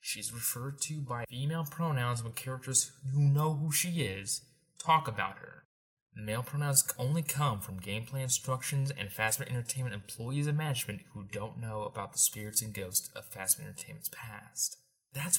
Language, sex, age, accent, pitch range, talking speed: English, male, 20-39, American, 110-145 Hz, 165 wpm